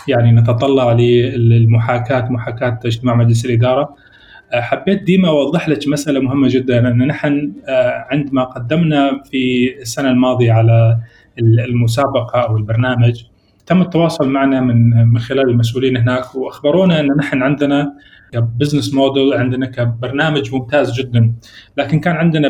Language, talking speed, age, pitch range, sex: Arabic, 125 wpm, 30-49, 120-145 Hz, male